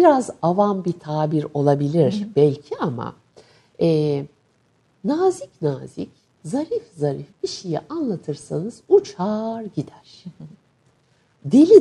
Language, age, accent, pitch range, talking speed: Turkish, 60-79, native, 150-210 Hz, 90 wpm